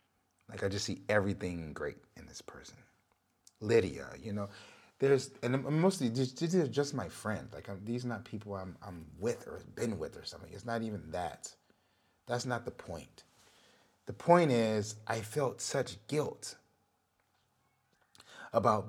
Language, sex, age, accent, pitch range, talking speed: English, male, 30-49, American, 100-125 Hz, 160 wpm